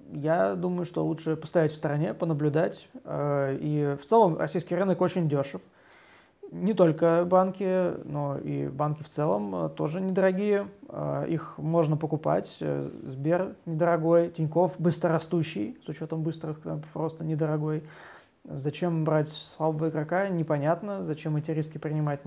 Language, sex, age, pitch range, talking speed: Turkish, male, 20-39, 150-175 Hz, 125 wpm